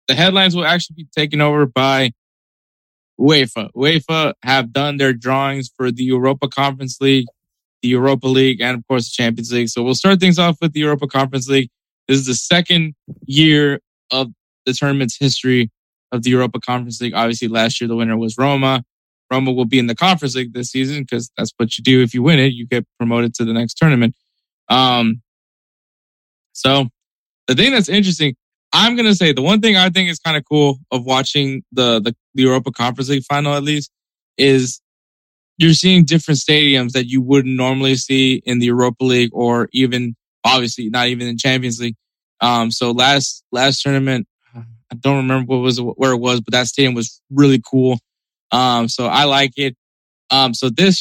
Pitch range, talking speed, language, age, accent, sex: 125-145 Hz, 190 wpm, English, 20-39, American, male